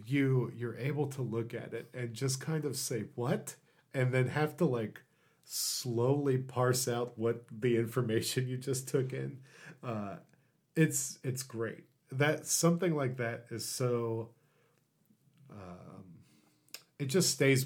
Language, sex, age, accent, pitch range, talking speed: English, male, 40-59, American, 110-135 Hz, 145 wpm